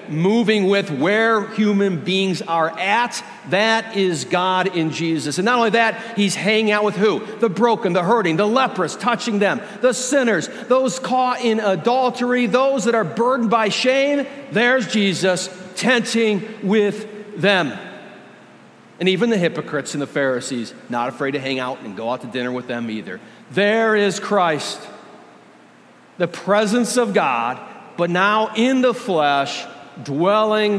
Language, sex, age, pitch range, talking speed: English, male, 50-69, 160-225 Hz, 155 wpm